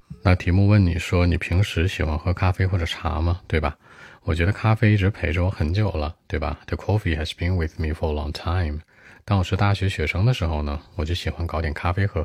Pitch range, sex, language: 80-95 Hz, male, Chinese